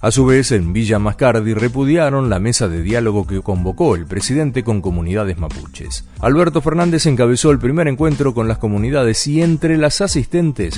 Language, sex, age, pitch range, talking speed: Spanish, male, 40-59, 105-145 Hz, 175 wpm